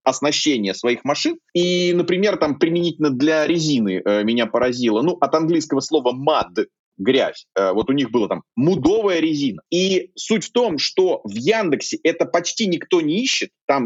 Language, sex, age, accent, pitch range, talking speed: Russian, male, 30-49, native, 125-205 Hz, 170 wpm